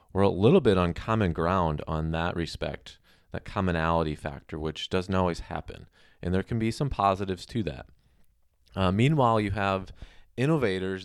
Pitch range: 85-100 Hz